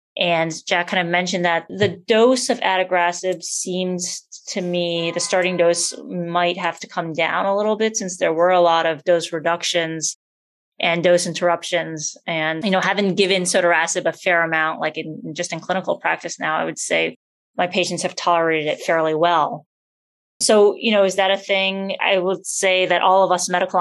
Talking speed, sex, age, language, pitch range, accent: 190 wpm, female, 20-39, English, 170-190 Hz, American